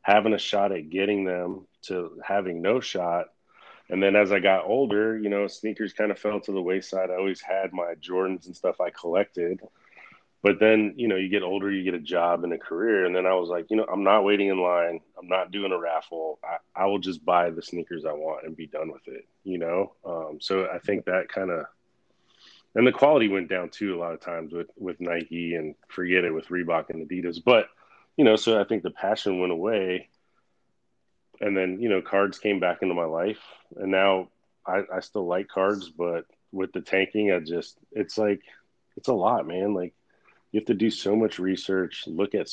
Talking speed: 220 wpm